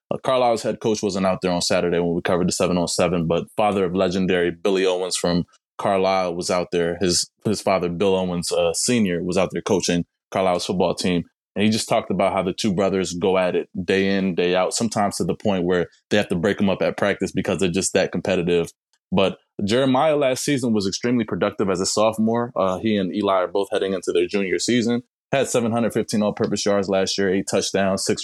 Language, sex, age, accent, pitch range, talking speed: English, male, 20-39, American, 90-110 Hz, 225 wpm